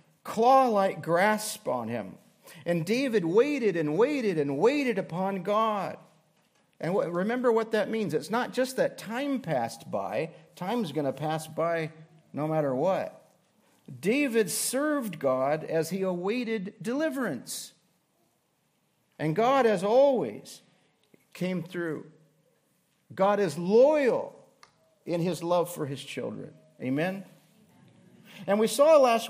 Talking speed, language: 125 wpm, English